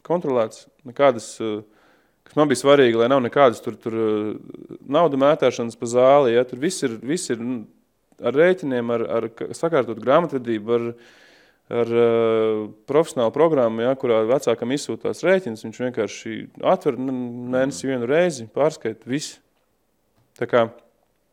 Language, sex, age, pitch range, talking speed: English, male, 20-39, 110-130 Hz, 125 wpm